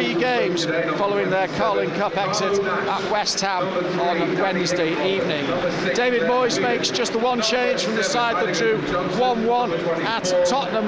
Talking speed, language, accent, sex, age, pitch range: 150 wpm, English, British, male, 40-59, 205-250 Hz